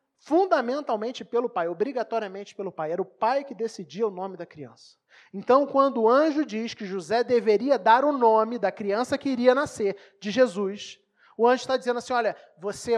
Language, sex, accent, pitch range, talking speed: Portuguese, male, Brazilian, 215-255 Hz, 185 wpm